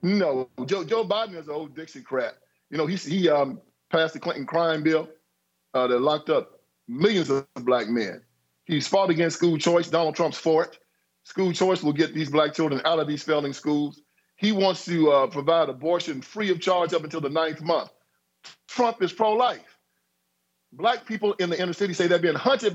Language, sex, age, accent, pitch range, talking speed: English, male, 50-69, American, 160-215 Hz, 200 wpm